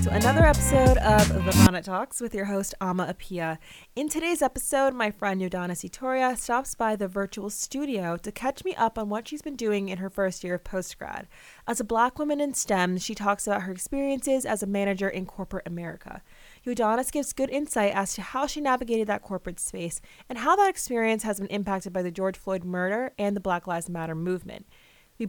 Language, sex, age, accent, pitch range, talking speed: English, female, 20-39, American, 185-250 Hz, 205 wpm